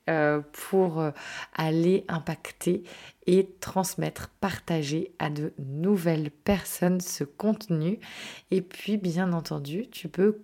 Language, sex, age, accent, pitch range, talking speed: French, female, 20-39, French, 160-200 Hz, 105 wpm